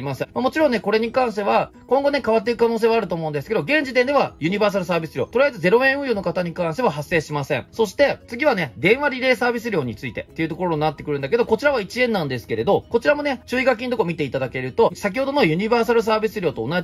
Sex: male